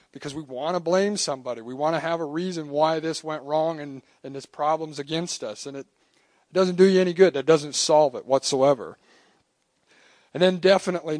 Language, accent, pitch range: English, American, 120-145 Hz